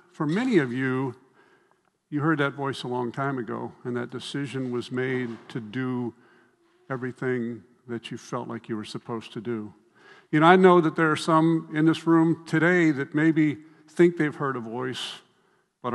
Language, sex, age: English, male, 50-69